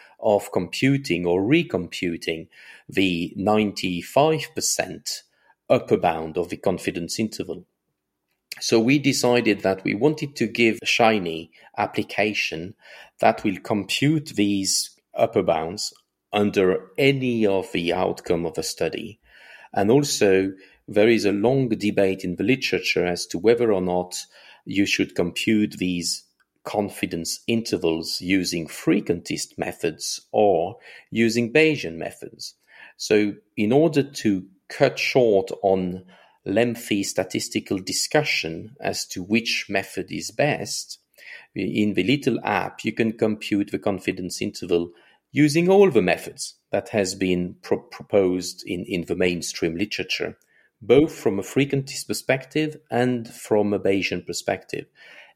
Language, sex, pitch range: English, male, 90-120 Hz